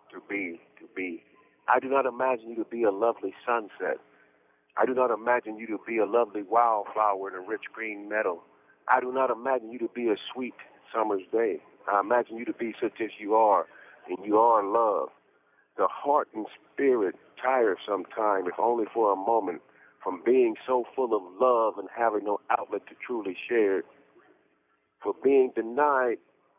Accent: American